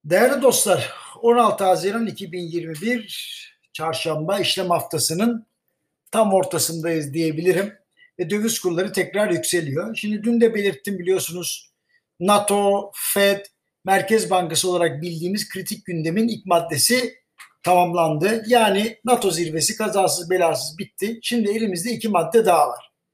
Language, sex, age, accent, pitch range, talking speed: Turkish, male, 60-79, native, 175-225 Hz, 115 wpm